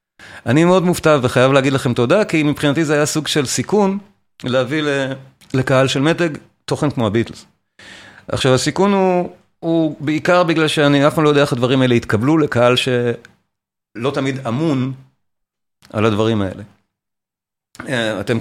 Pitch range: 115-155 Hz